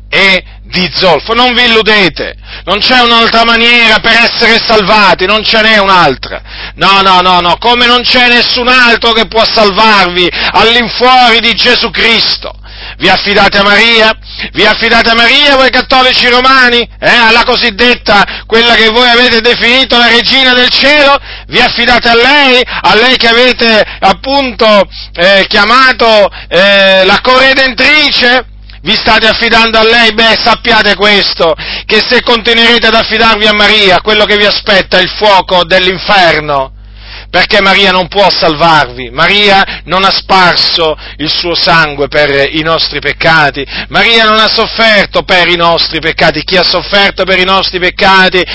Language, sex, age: Italian, male, 40-59